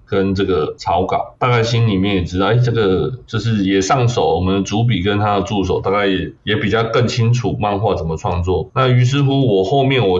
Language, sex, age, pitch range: Chinese, male, 20-39, 95-120 Hz